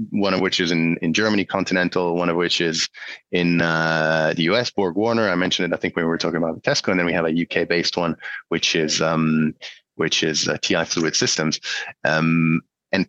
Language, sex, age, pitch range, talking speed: English, male, 30-49, 80-95 Hz, 220 wpm